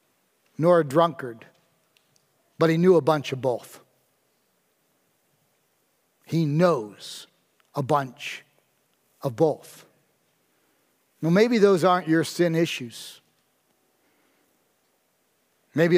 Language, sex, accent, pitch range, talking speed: English, male, American, 150-180 Hz, 90 wpm